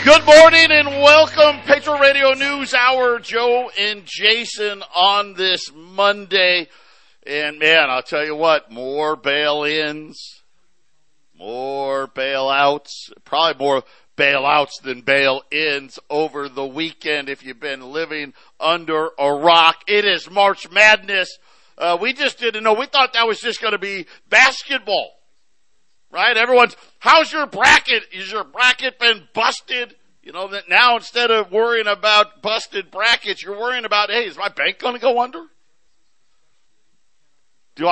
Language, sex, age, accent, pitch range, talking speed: English, male, 50-69, American, 155-235 Hz, 140 wpm